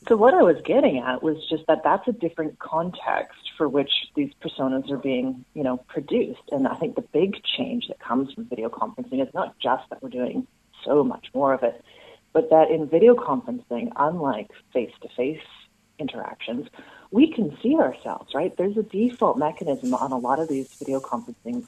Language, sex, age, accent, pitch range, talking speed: English, female, 30-49, American, 135-200 Hz, 190 wpm